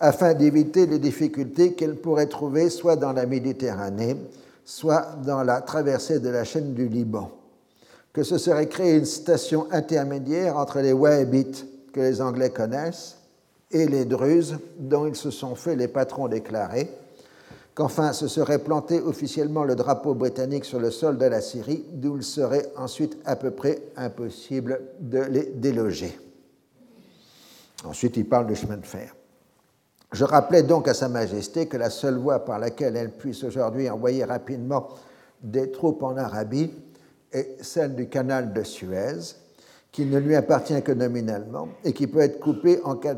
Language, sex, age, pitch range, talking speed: French, male, 50-69, 125-150 Hz, 165 wpm